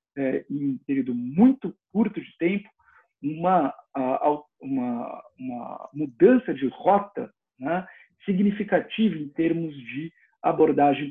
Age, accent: 50-69, Brazilian